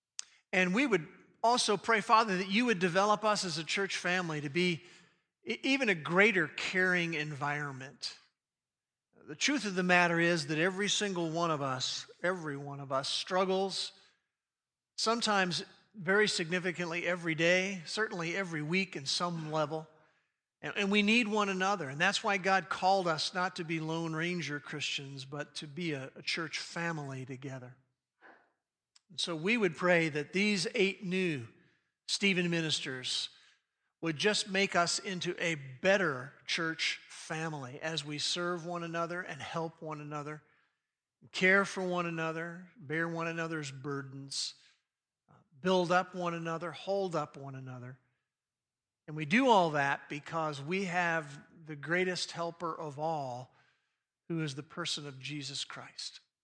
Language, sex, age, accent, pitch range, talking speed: English, male, 50-69, American, 150-190 Hz, 145 wpm